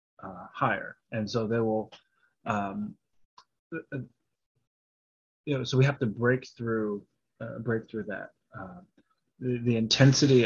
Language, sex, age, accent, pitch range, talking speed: English, male, 30-49, American, 100-120 Hz, 145 wpm